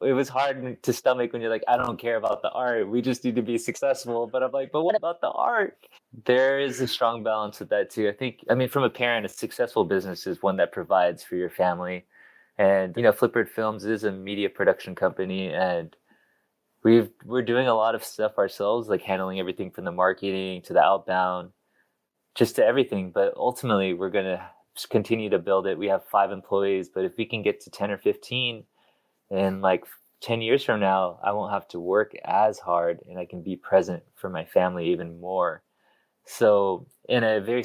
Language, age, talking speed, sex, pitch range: English, 20-39, 210 wpm, male, 95-125 Hz